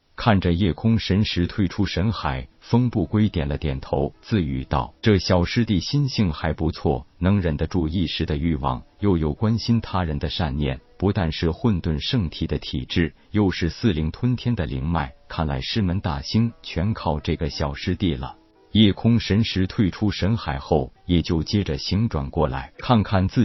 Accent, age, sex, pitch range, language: native, 50-69, male, 80-105 Hz, Chinese